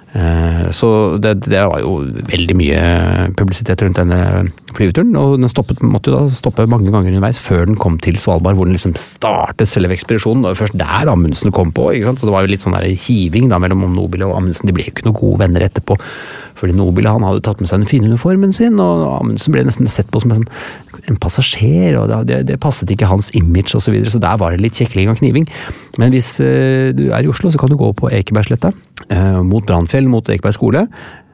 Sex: male